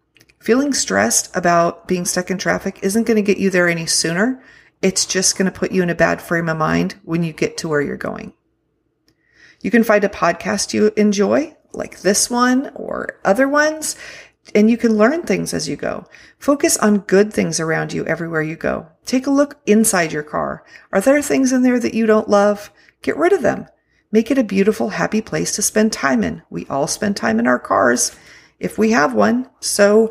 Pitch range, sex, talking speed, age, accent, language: 165-220 Hz, female, 210 wpm, 40-59, American, English